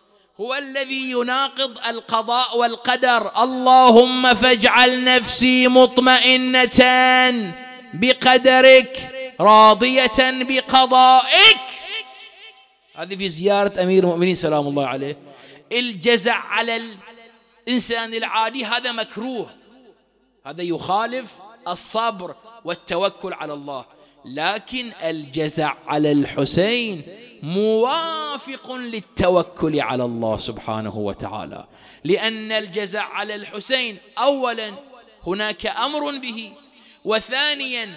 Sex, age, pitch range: male, 30-49, 190-255 Hz